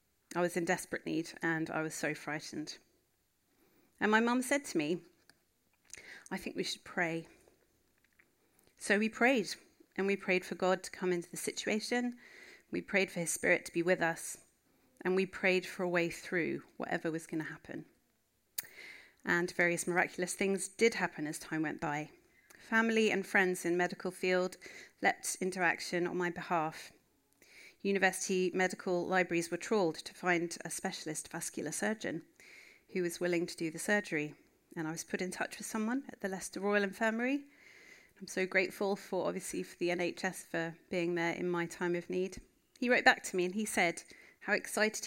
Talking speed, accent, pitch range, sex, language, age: 180 wpm, British, 170-205 Hz, female, English, 30-49